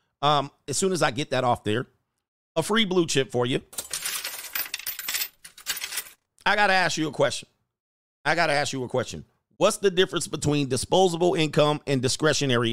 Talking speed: 175 wpm